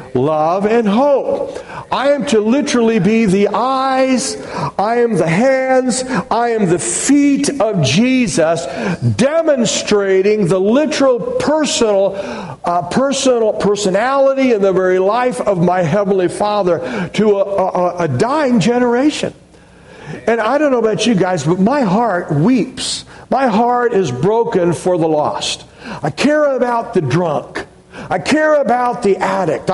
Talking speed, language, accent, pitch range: 140 wpm, English, American, 200-265 Hz